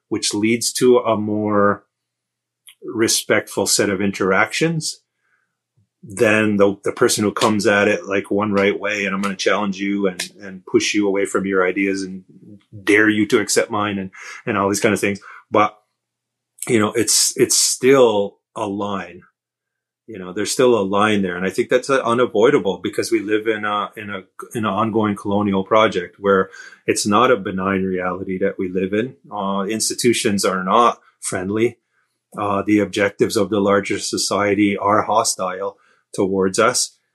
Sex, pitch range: male, 100-110 Hz